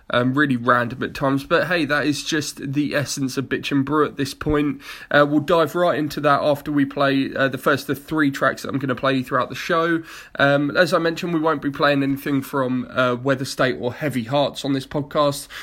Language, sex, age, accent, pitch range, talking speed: English, male, 20-39, British, 130-155 Hz, 235 wpm